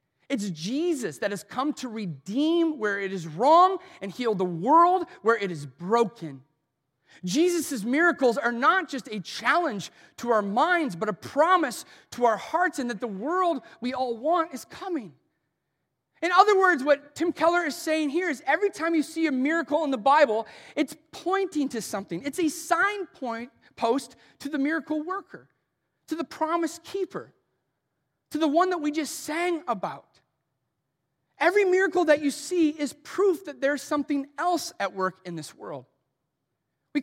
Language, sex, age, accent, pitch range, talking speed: English, male, 30-49, American, 225-325 Hz, 165 wpm